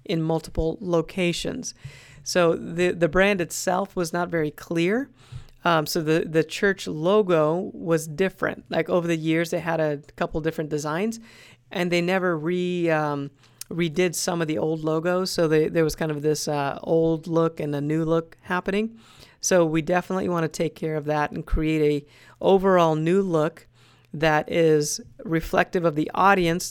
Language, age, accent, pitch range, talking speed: English, 40-59, American, 150-175 Hz, 170 wpm